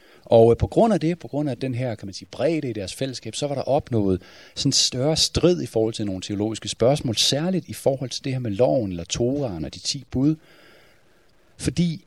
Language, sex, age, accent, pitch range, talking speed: Danish, male, 40-59, native, 110-155 Hz, 230 wpm